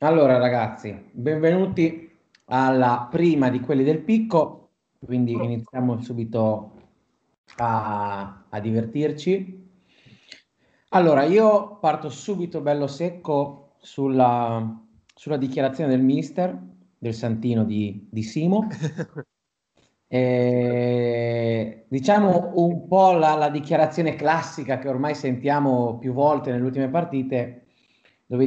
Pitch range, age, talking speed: 115-155 Hz, 30-49, 100 wpm